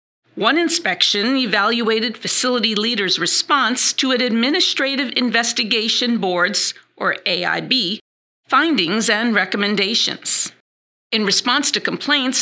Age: 50-69